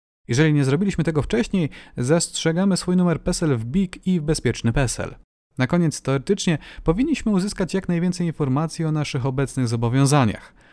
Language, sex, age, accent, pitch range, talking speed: Polish, male, 30-49, native, 130-180 Hz, 150 wpm